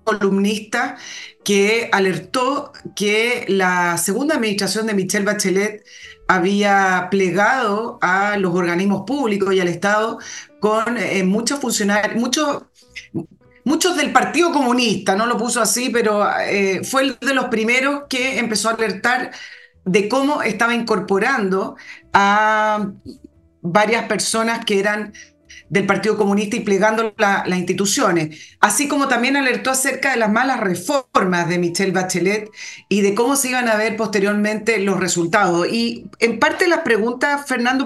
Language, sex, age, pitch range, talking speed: Spanish, female, 40-59, 200-260 Hz, 140 wpm